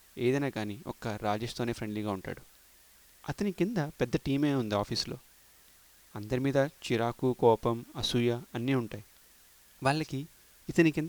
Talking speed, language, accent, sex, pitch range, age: 85 wpm, Telugu, native, male, 115-140 Hz, 30-49